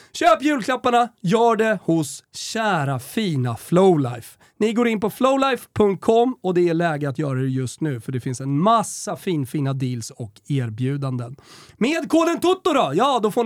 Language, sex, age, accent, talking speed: Swedish, male, 30-49, native, 175 wpm